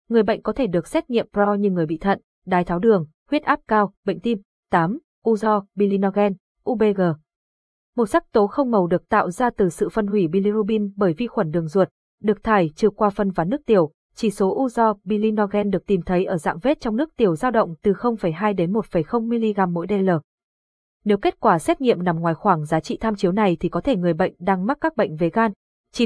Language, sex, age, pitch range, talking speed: Vietnamese, female, 20-39, 185-230 Hz, 220 wpm